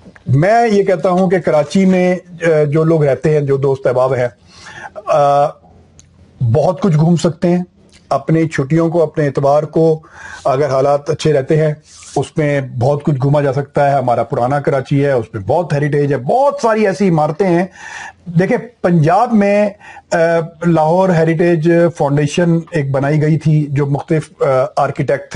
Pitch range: 145-175 Hz